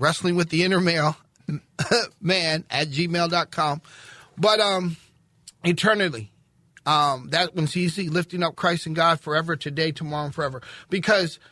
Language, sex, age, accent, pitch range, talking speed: English, male, 40-59, American, 155-205 Hz, 135 wpm